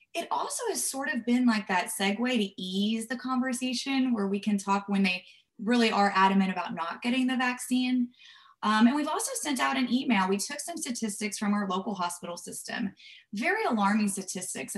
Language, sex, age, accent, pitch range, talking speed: English, female, 20-39, American, 200-245 Hz, 190 wpm